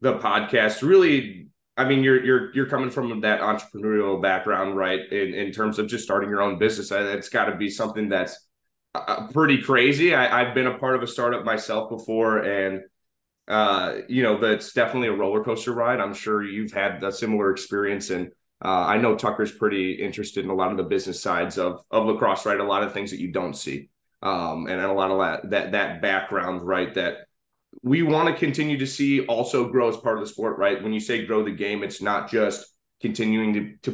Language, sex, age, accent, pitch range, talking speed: English, male, 30-49, American, 100-120 Hz, 215 wpm